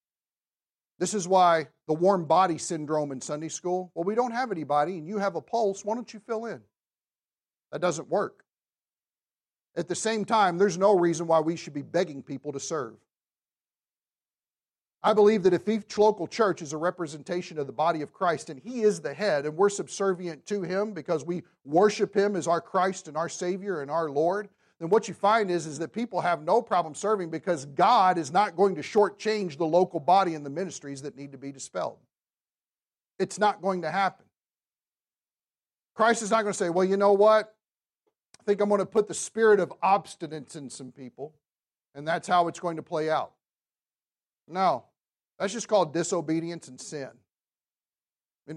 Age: 50-69